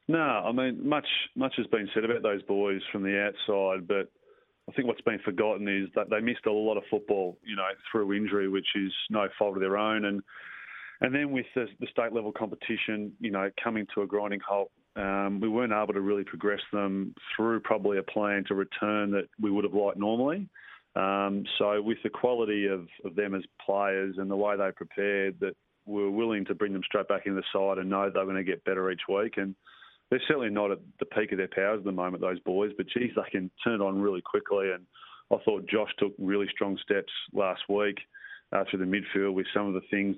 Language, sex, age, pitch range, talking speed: English, male, 30-49, 95-105 Hz, 230 wpm